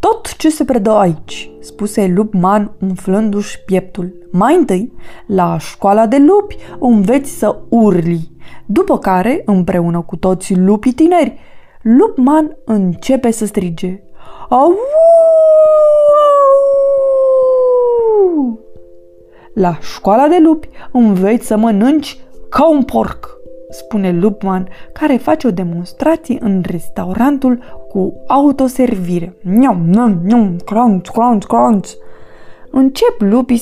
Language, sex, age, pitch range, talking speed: Romanian, female, 20-39, 185-275 Hz, 105 wpm